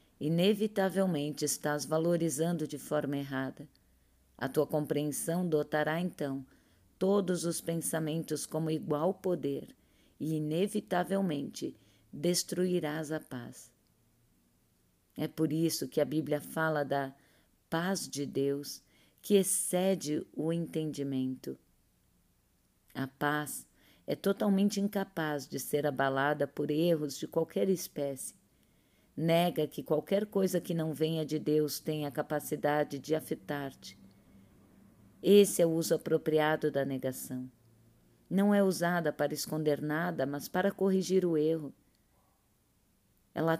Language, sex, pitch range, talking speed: Portuguese, female, 140-170 Hz, 115 wpm